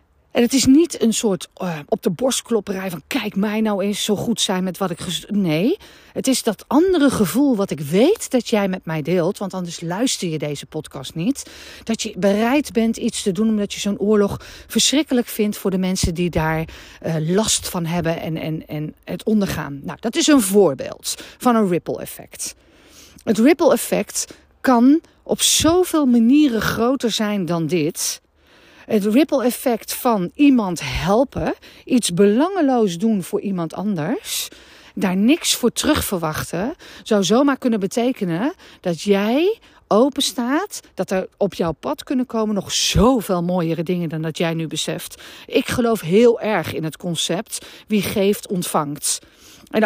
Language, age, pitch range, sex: Dutch, 40-59, 180-250 Hz, female